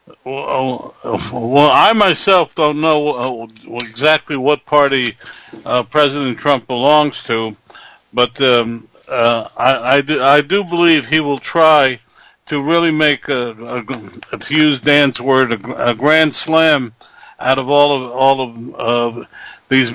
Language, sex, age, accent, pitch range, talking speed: English, male, 60-79, American, 120-150 Hz, 140 wpm